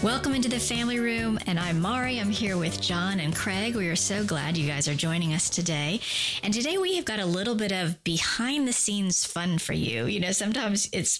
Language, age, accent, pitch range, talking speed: English, 40-59, American, 165-215 Hz, 220 wpm